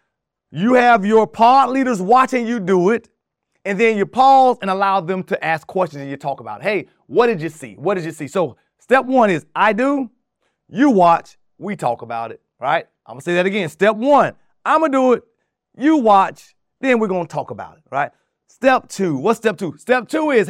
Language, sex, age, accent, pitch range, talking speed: English, male, 30-49, American, 190-260 Hz, 225 wpm